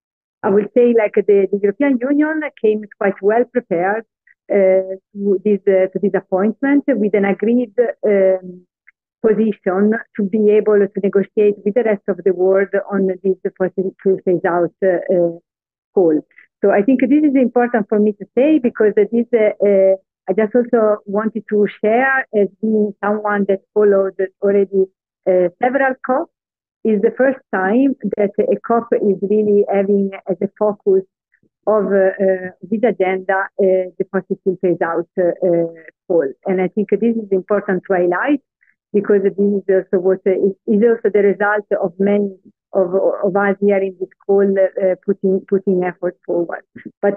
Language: German